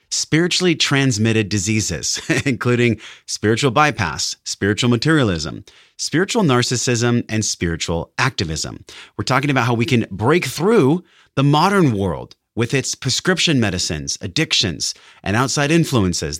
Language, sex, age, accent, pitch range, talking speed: English, male, 30-49, American, 105-145 Hz, 115 wpm